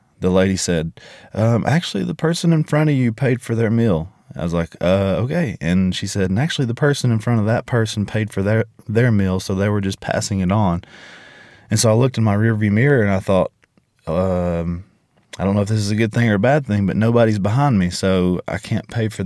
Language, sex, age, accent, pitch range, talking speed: English, male, 20-39, American, 95-115 Hz, 245 wpm